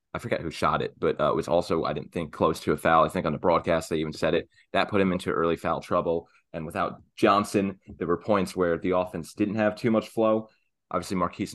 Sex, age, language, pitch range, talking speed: male, 20-39, English, 90-105 Hz, 255 wpm